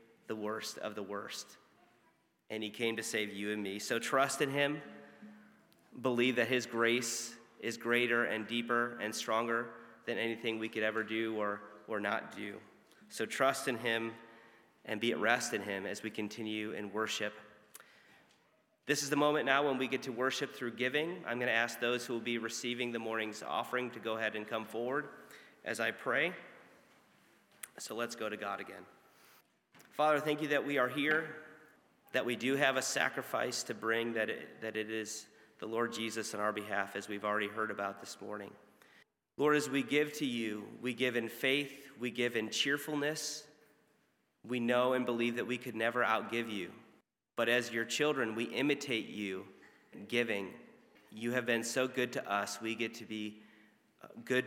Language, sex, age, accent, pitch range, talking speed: English, male, 30-49, American, 110-125 Hz, 185 wpm